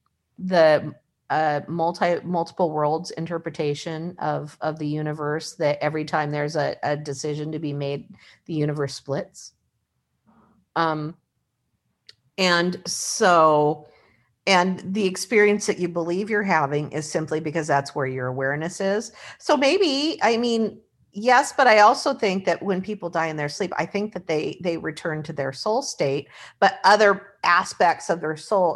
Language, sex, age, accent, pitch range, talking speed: English, female, 50-69, American, 150-195 Hz, 155 wpm